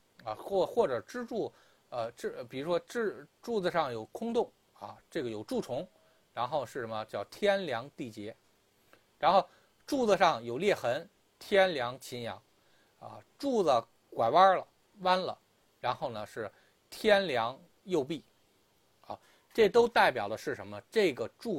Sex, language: male, Chinese